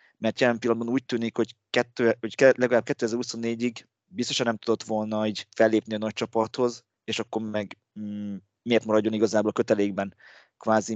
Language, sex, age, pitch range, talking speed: Hungarian, male, 30-49, 105-120 Hz, 155 wpm